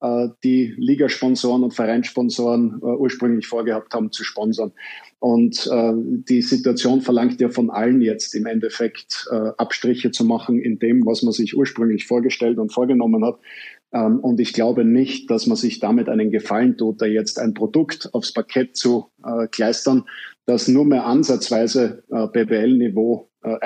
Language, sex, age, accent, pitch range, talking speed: German, male, 50-69, German, 115-130 Hz, 160 wpm